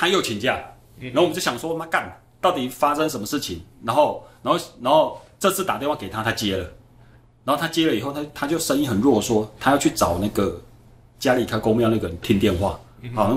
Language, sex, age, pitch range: Chinese, male, 30-49, 105-120 Hz